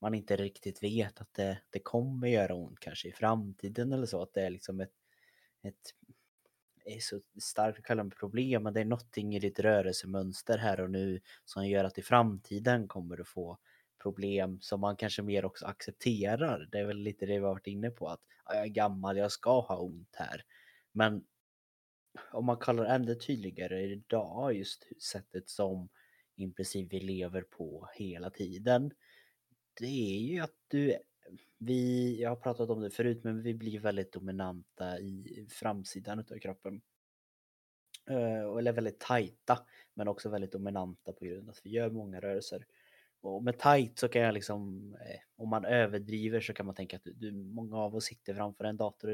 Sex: male